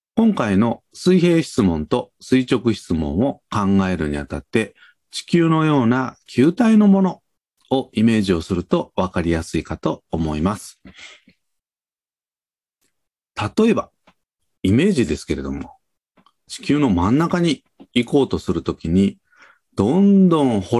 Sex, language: male, Japanese